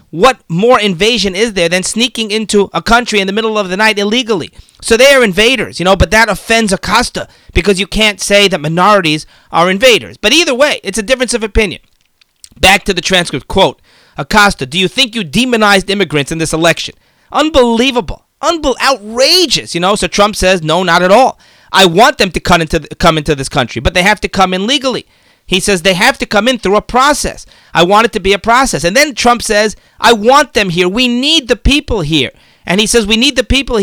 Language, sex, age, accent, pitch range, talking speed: English, male, 40-59, American, 180-240 Hz, 215 wpm